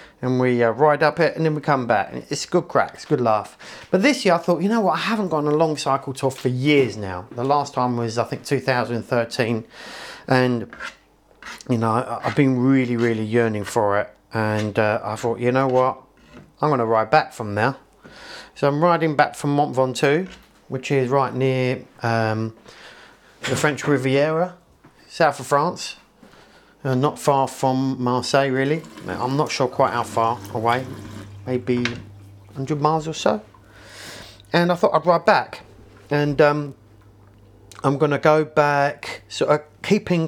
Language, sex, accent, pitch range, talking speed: English, male, British, 110-150 Hz, 180 wpm